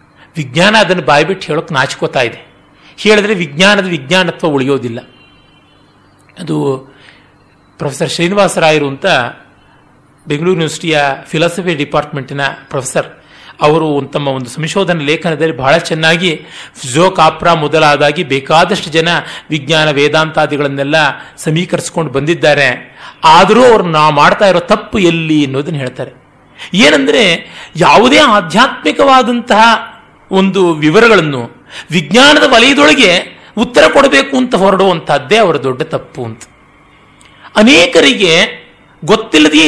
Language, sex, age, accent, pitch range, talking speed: Kannada, male, 40-59, native, 145-195 Hz, 90 wpm